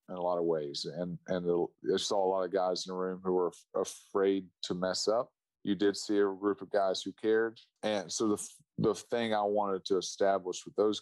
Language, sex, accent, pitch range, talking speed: English, male, American, 90-105 Hz, 230 wpm